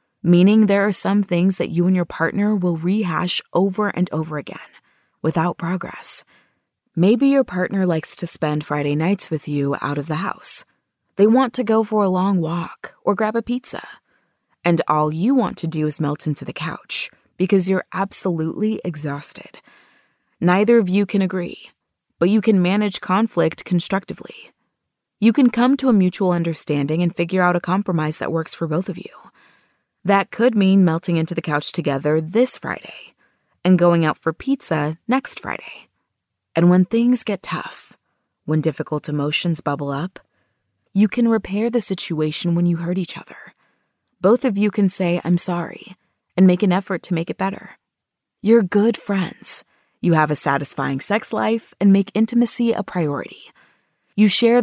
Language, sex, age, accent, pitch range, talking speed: English, female, 20-39, American, 160-210 Hz, 170 wpm